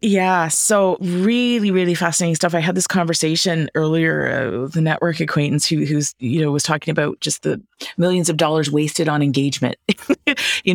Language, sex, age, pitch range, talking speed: English, female, 30-49, 150-185 Hz, 175 wpm